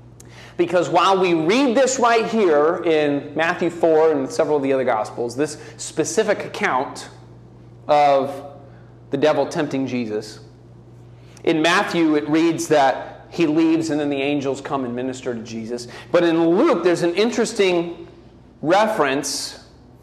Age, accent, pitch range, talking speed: 30-49, American, 120-175 Hz, 140 wpm